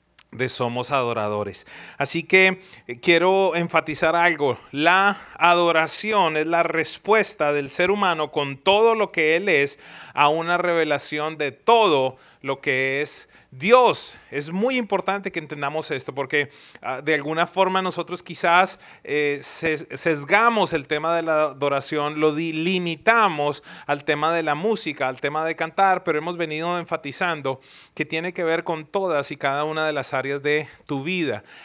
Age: 30-49